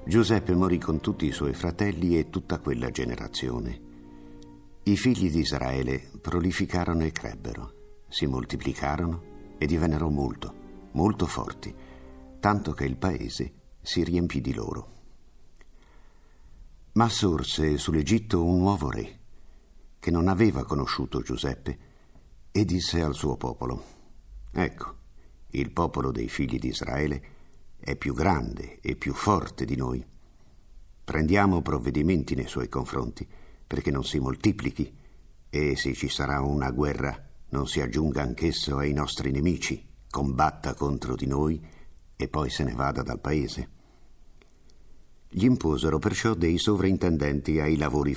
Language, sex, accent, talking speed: Italian, male, native, 130 wpm